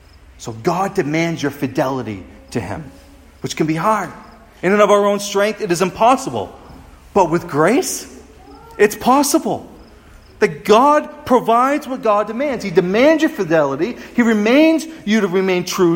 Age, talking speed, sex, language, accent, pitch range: 40-59, 155 wpm, male, English, American, 125-190 Hz